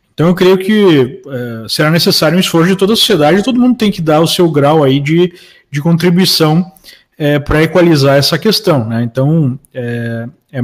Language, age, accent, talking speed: Portuguese, 20-39, Brazilian, 190 wpm